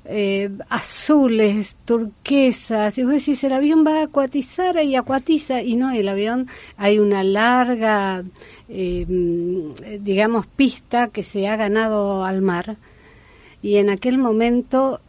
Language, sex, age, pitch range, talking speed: Spanish, female, 40-59, 190-240 Hz, 130 wpm